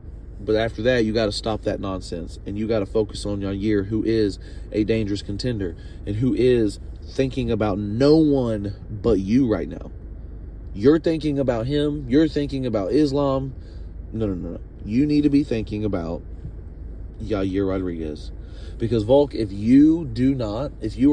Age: 30-49